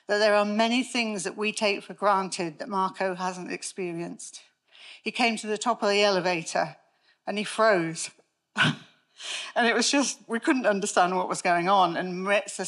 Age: 40-59